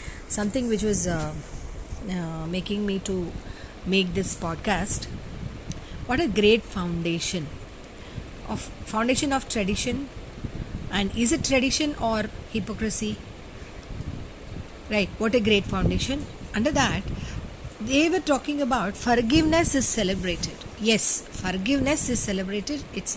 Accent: native